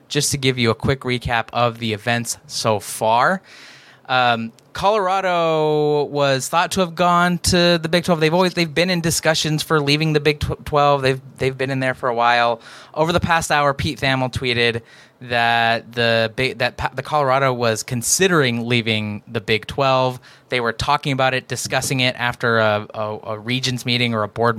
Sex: male